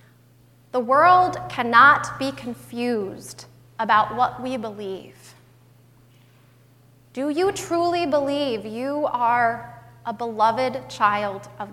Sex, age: female, 20-39